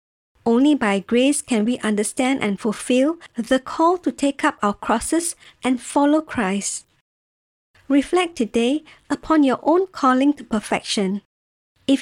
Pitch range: 230-300 Hz